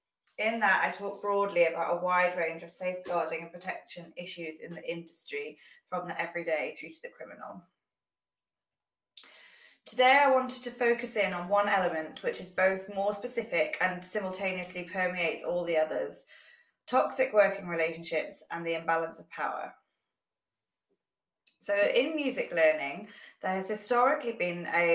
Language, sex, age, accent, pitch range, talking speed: English, female, 20-39, British, 170-210 Hz, 145 wpm